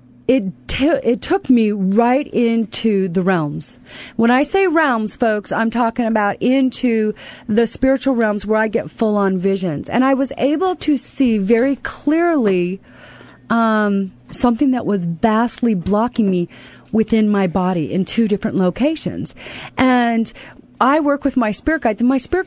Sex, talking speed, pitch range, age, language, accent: female, 155 wpm, 195-260 Hz, 40-59, English, American